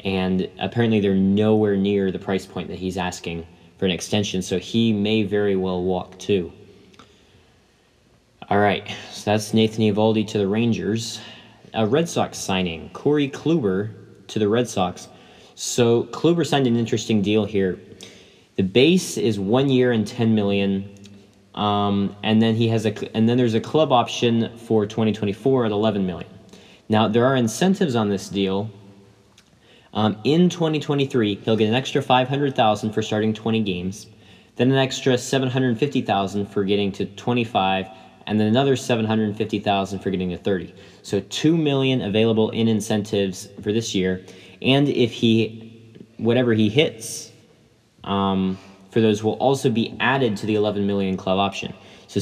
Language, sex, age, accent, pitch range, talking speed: English, male, 20-39, American, 100-120 Hz, 155 wpm